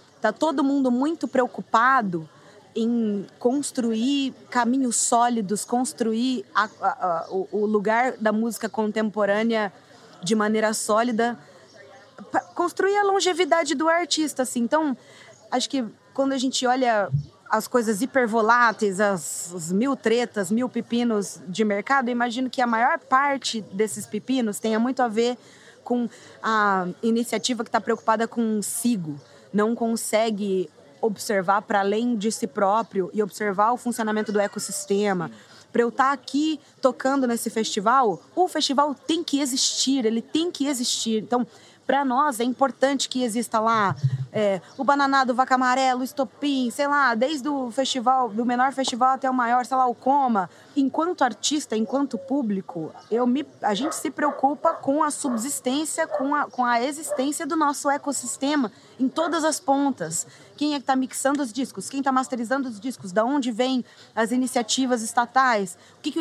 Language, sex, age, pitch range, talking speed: Portuguese, female, 20-39, 220-270 Hz, 155 wpm